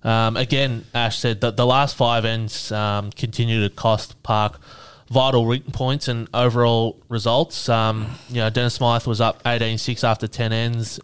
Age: 20-39